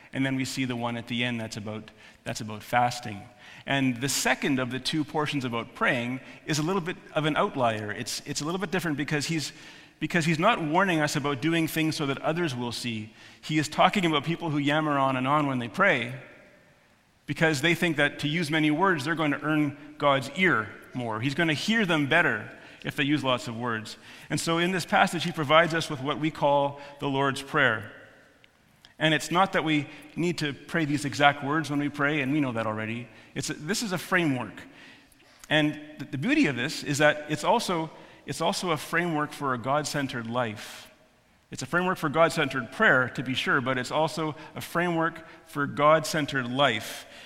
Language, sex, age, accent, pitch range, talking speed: English, male, 40-59, American, 130-160 Hz, 210 wpm